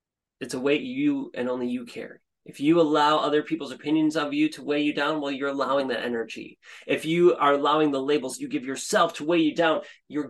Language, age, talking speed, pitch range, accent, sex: English, 30-49, 225 wpm, 145-185 Hz, American, male